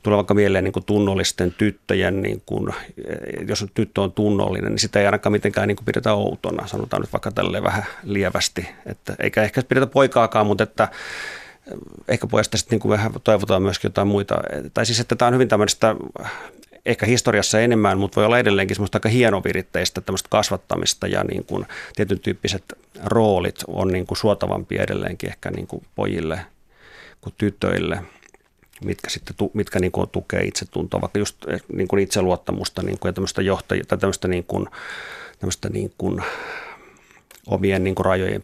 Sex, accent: male, native